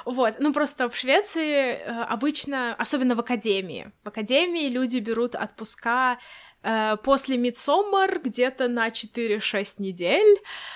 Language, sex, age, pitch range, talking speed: Russian, female, 20-39, 225-275 Hz, 115 wpm